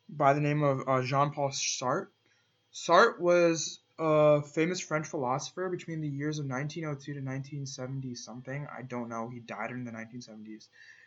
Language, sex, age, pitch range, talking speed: English, male, 20-39, 130-165 Hz, 155 wpm